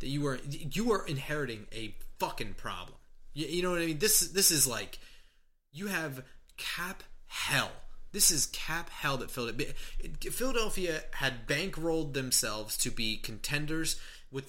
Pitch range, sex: 120-155 Hz, male